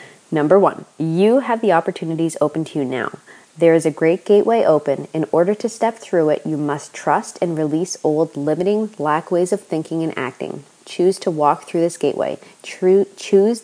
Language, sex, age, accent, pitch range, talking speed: English, female, 20-39, American, 160-195 Hz, 185 wpm